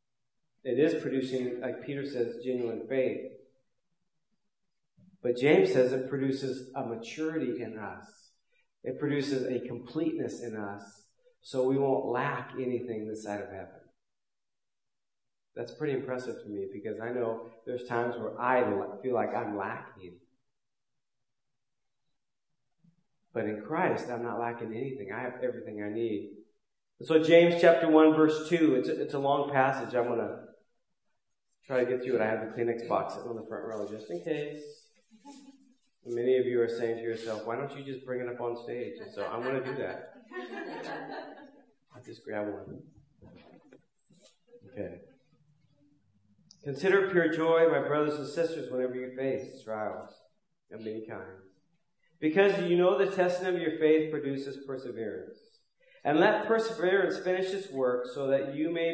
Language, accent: English, American